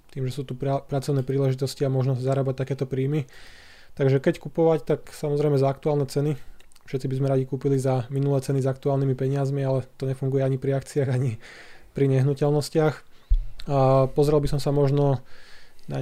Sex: male